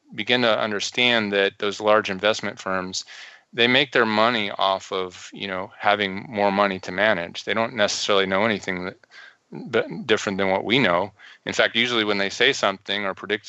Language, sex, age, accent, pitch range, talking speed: English, male, 30-49, American, 95-105 Hz, 180 wpm